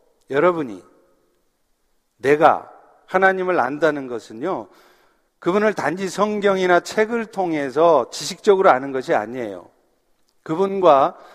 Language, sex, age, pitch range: Korean, male, 50-69, 155-215 Hz